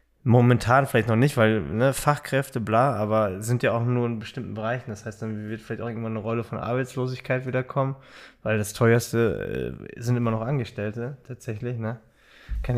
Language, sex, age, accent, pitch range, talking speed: German, male, 20-39, German, 115-130 Hz, 190 wpm